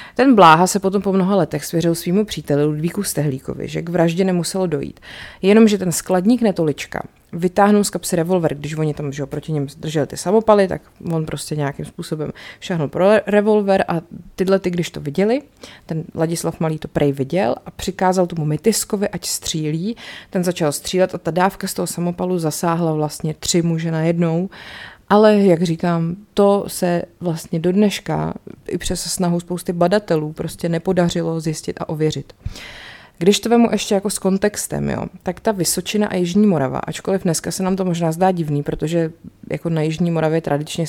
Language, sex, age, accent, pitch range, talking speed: Czech, female, 30-49, native, 160-195 Hz, 175 wpm